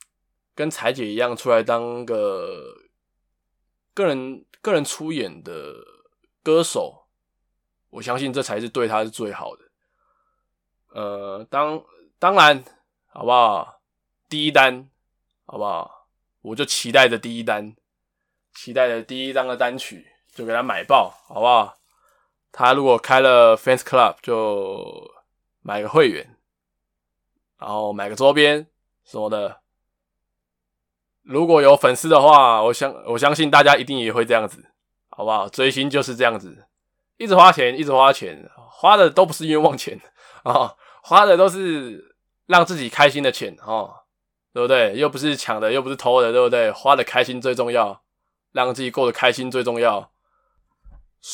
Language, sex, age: Chinese, male, 20-39